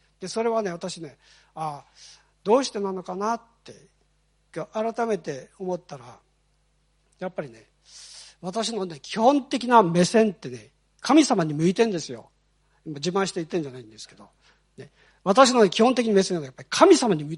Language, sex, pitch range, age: Japanese, male, 160-245 Hz, 40-59